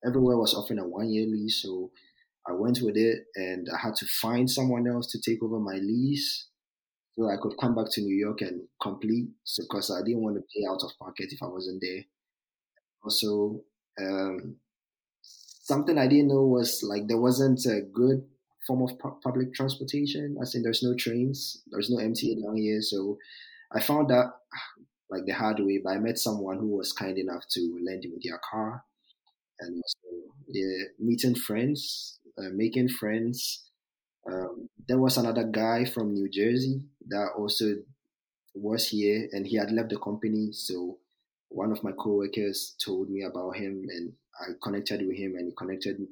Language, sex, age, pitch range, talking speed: English, male, 20-39, 95-120 Hz, 180 wpm